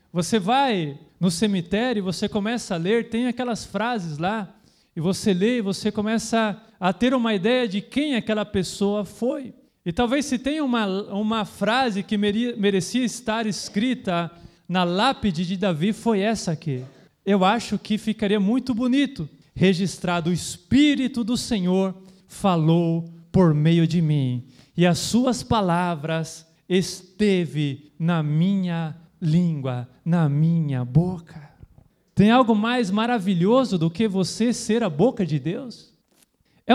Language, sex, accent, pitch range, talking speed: Portuguese, male, Brazilian, 170-230 Hz, 140 wpm